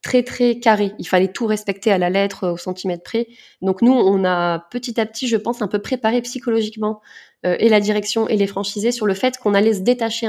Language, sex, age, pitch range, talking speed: French, female, 20-39, 180-220 Hz, 235 wpm